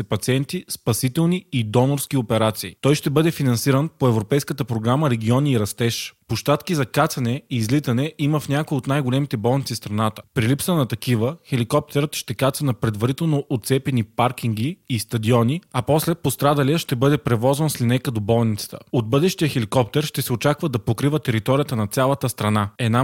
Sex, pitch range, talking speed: male, 120-145 Hz, 165 wpm